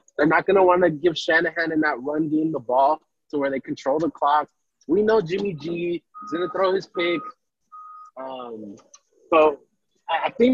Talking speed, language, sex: 195 wpm, English, male